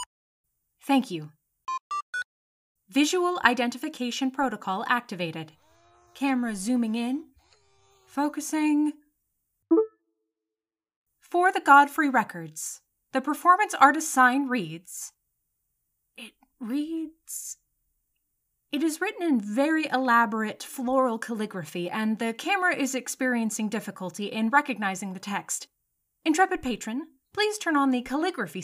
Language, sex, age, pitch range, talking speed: English, female, 30-49, 195-285 Hz, 95 wpm